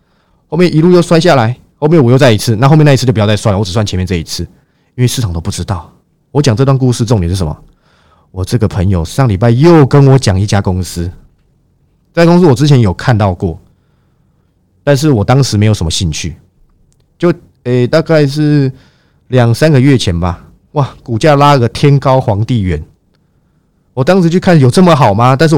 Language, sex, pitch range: Chinese, male, 100-135 Hz